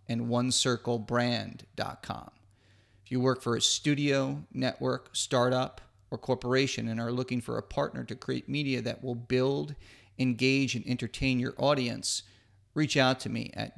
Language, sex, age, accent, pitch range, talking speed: English, male, 40-59, American, 115-130 Hz, 150 wpm